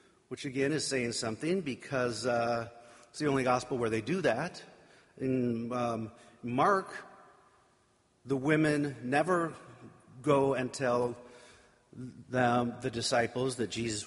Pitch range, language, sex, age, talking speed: 120-170 Hz, English, male, 50-69, 125 wpm